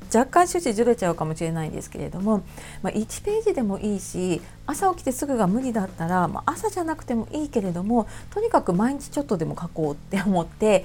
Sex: female